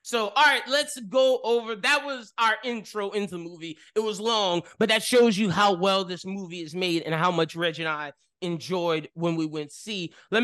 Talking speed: 220 wpm